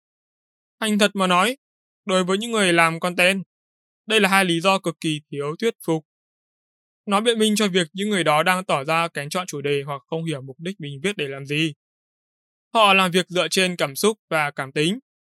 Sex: male